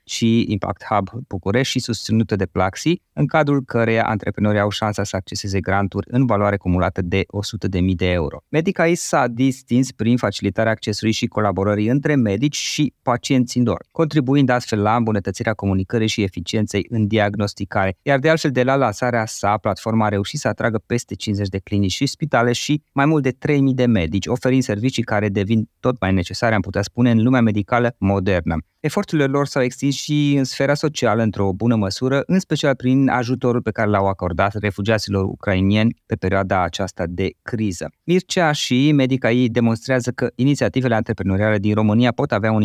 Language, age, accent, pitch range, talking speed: Romanian, 20-39, native, 100-130 Hz, 175 wpm